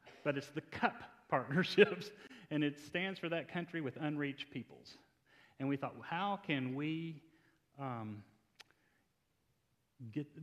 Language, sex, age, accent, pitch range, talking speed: English, male, 40-59, American, 125-155 Hz, 125 wpm